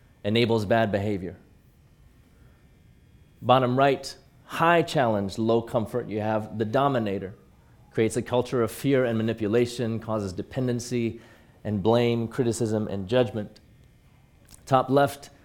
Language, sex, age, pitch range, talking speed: English, male, 30-49, 105-125 Hz, 115 wpm